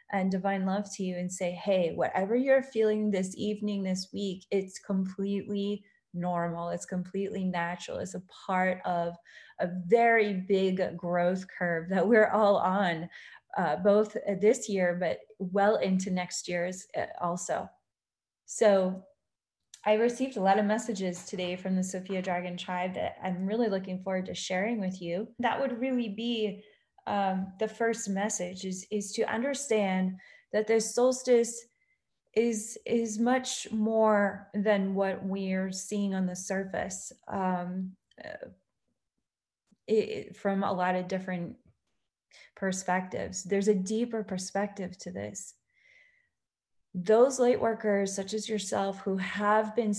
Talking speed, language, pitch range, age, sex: 140 wpm, English, 185-220 Hz, 30-49, female